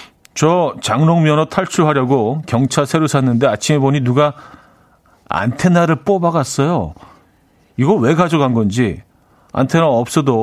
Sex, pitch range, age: male, 115-160 Hz, 40-59